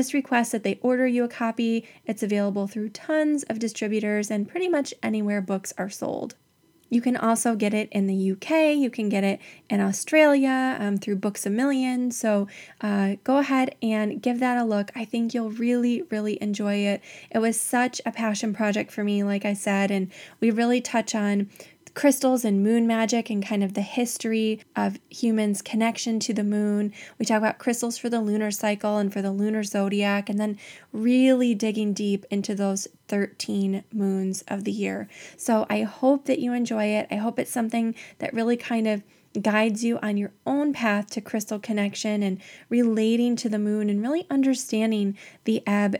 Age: 20-39